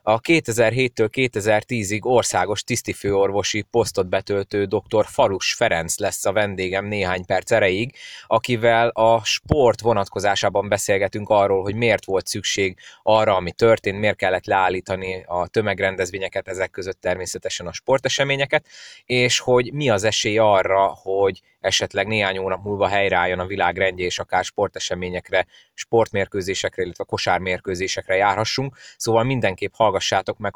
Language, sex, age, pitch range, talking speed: Hungarian, male, 20-39, 95-115 Hz, 120 wpm